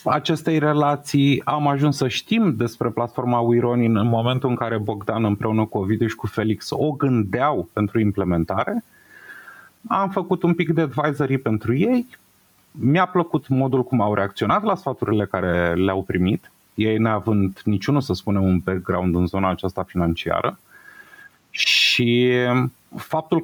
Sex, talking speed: male, 145 wpm